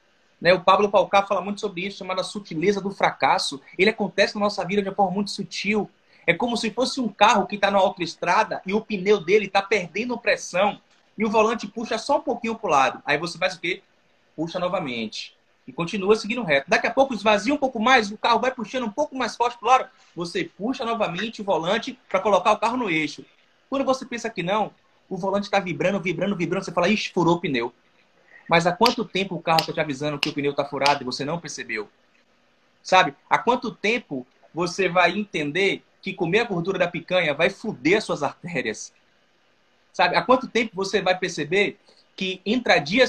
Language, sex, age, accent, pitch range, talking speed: Portuguese, male, 20-39, Brazilian, 175-220 Hz, 210 wpm